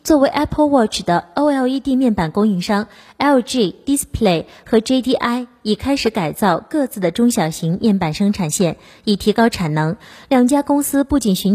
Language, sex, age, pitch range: Chinese, female, 20-39, 190-255 Hz